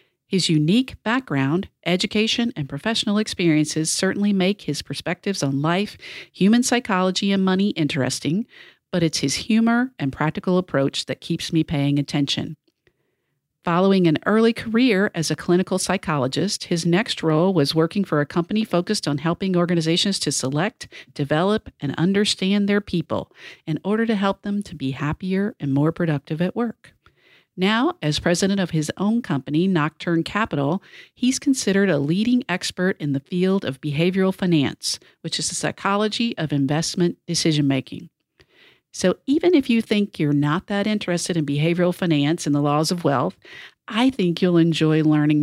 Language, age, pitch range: English, 50-69, 155-205 Hz